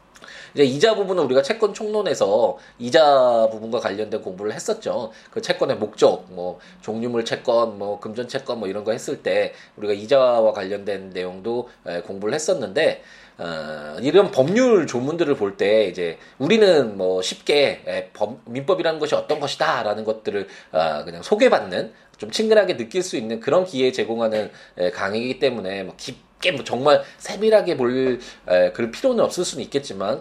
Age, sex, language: 20-39, male, Korean